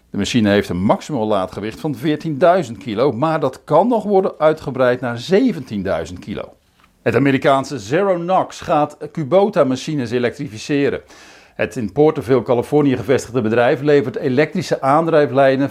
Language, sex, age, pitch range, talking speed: Dutch, male, 50-69, 120-165 Hz, 130 wpm